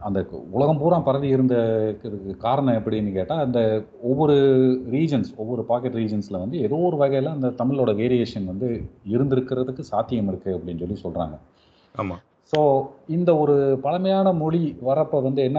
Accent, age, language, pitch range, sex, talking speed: native, 40-59, Tamil, 115-150 Hz, male, 140 wpm